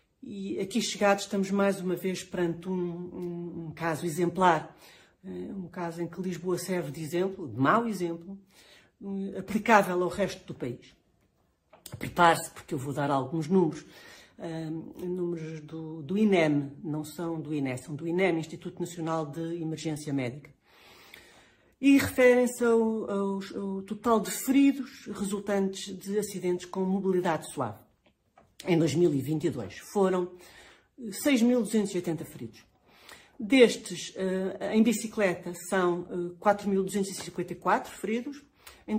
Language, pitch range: Portuguese, 160-200 Hz